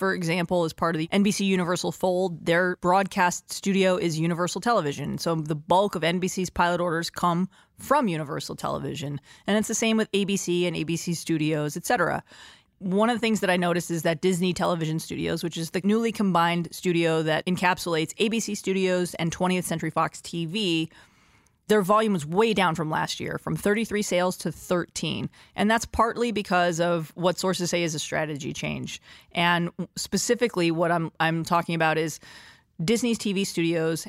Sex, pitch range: female, 165-195 Hz